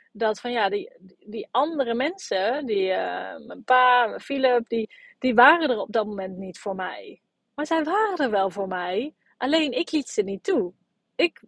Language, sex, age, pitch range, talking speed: Dutch, female, 30-49, 210-275 Hz, 190 wpm